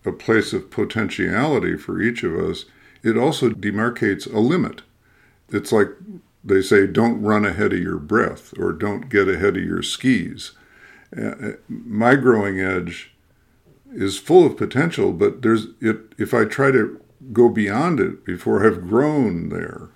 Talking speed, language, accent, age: 155 wpm, English, American, 50-69